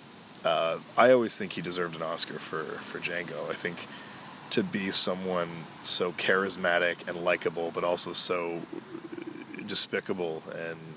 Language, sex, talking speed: English, male, 135 wpm